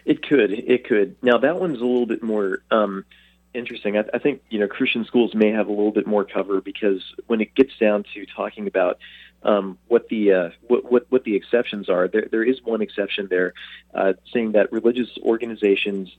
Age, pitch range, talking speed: 40-59, 100-115 Hz, 210 wpm